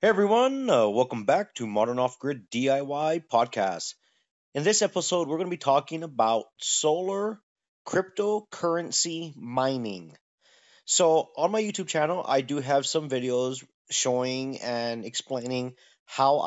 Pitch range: 120-160 Hz